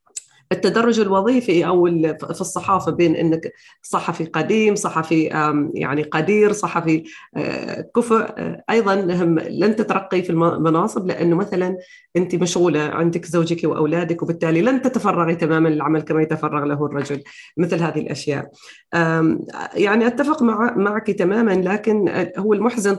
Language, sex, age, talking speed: Arabic, female, 30-49, 120 wpm